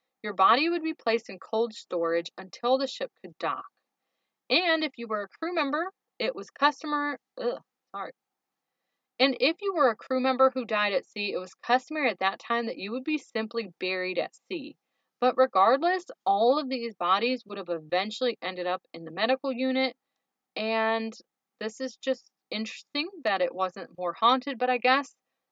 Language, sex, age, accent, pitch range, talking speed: English, female, 30-49, American, 190-265 Hz, 185 wpm